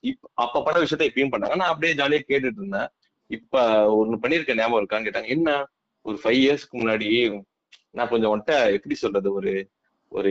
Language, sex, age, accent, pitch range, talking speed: Tamil, male, 20-39, native, 115-175 Hz, 170 wpm